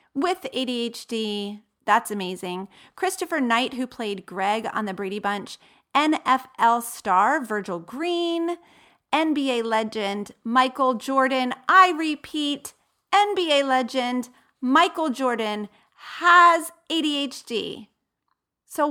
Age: 40-59